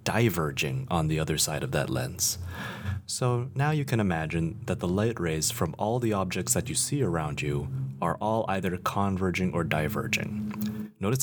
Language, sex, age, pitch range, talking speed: English, male, 30-49, 85-110 Hz, 175 wpm